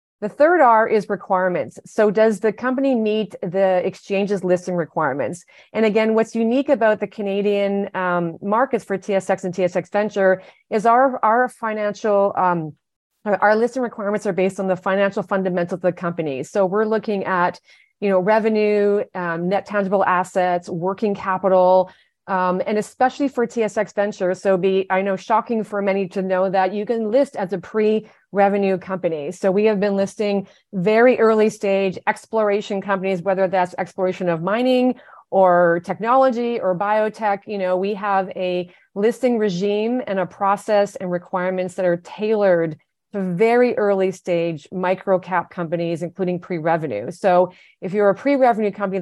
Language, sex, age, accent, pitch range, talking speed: English, female, 30-49, American, 185-215 Hz, 160 wpm